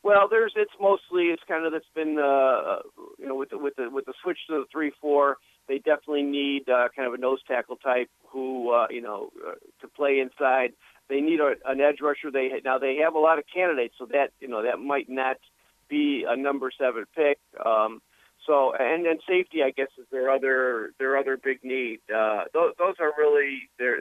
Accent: American